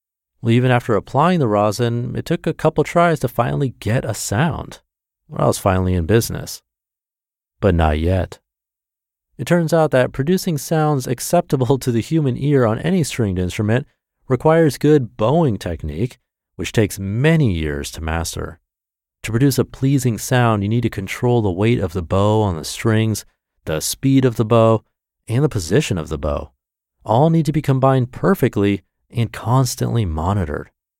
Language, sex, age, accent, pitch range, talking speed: English, male, 30-49, American, 85-130 Hz, 170 wpm